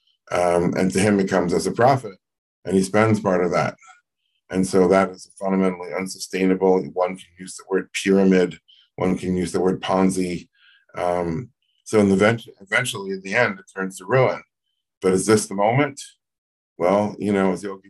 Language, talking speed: English, 190 wpm